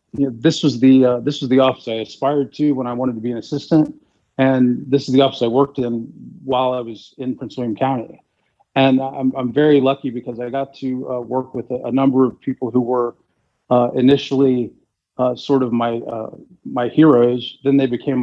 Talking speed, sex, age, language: 220 wpm, male, 40-59, English